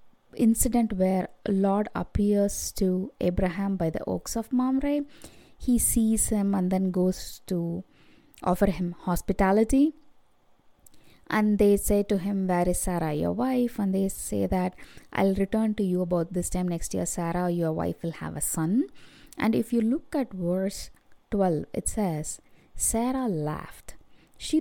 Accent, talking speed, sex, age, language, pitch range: Indian, 155 wpm, female, 20-39, English, 180-240 Hz